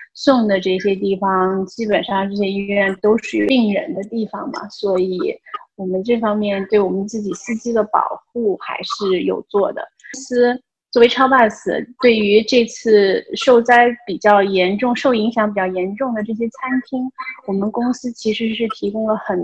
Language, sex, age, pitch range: Chinese, female, 20-39, 195-235 Hz